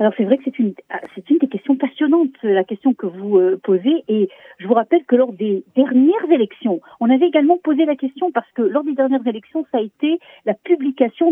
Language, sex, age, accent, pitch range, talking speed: French, female, 50-69, French, 215-295 Hz, 225 wpm